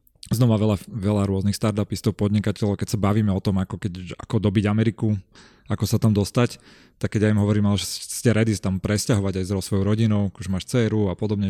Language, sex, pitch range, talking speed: Slovak, male, 100-115 Hz, 205 wpm